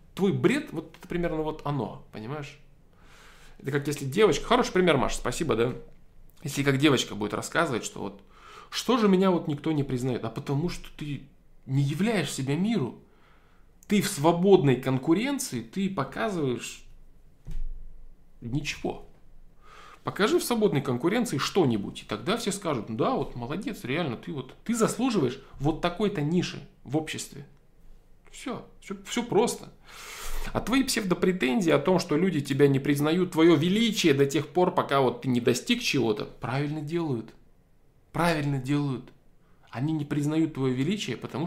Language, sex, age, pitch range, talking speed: Russian, male, 20-39, 140-190 Hz, 150 wpm